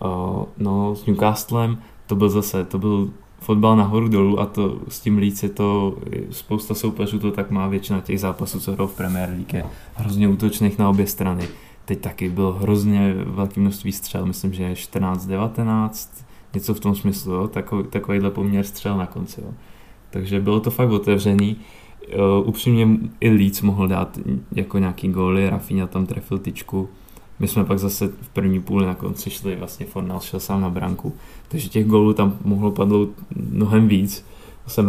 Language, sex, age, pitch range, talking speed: Czech, male, 20-39, 95-105 Hz, 170 wpm